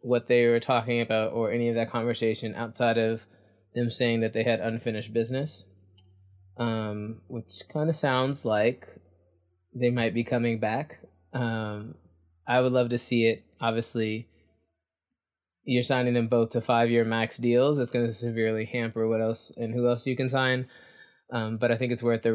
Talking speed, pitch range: 175 wpm, 110-125 Hz